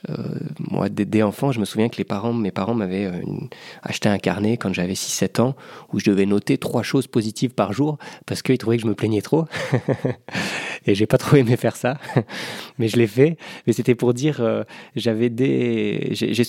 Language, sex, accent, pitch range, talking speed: French, male, French, 100-130 Hz, 195 wpm